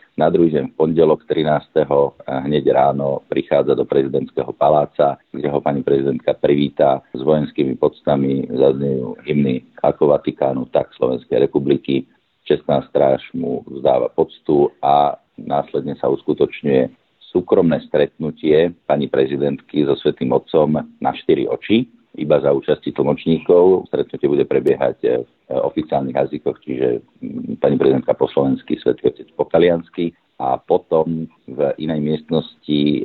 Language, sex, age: Slovak, male, 50-69